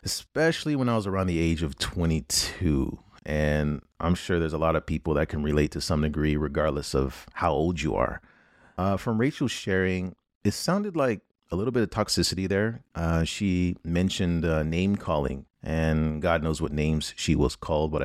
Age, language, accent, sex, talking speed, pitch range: 30-49, English, American, male, 190 wpm, 75-90 Hz